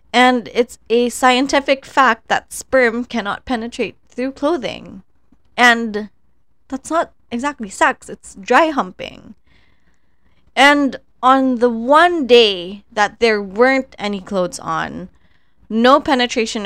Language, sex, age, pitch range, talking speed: Filipino, female, 10-29, 195-250 Hz, 115 wpm